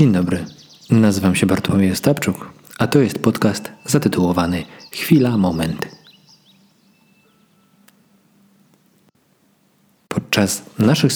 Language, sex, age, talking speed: Polish, male, 40-59, 80 wpm